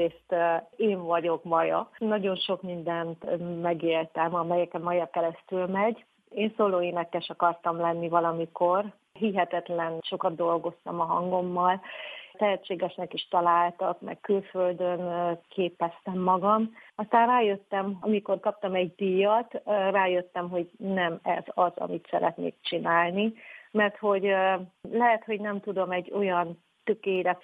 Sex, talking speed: female, 115 wpm